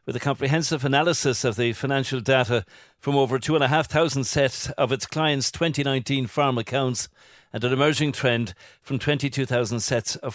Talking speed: 150 wpm